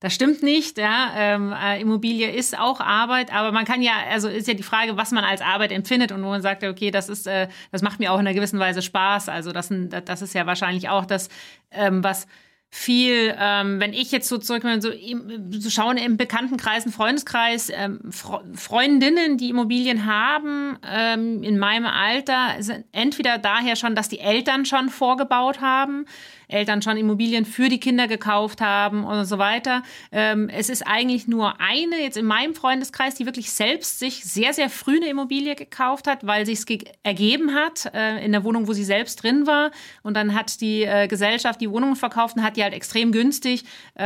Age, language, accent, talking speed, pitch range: 40-59, German, German, 195 wpm, 205-250 Hz